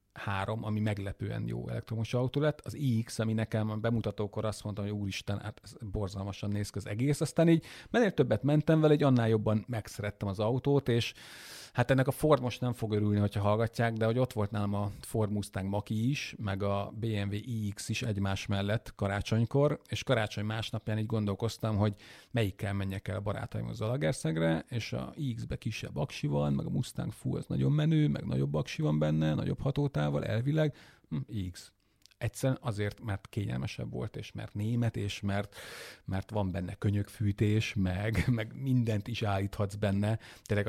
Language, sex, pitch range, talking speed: Hungarian, male, 100-120 Hz, 180 wpm